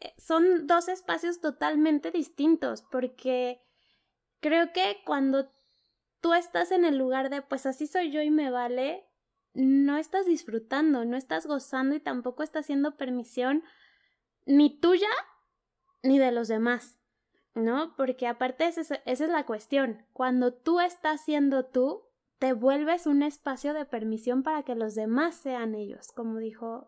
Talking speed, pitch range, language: 145 wpm, 250-310 Hz, Spanish